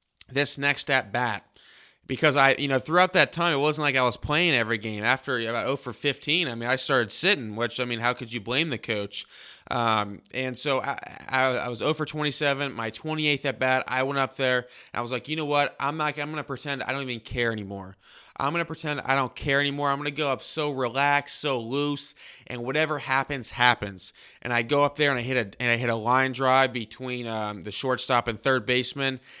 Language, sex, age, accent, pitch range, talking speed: English, male, 20-39, American, 115-130 Hz, 235 wpm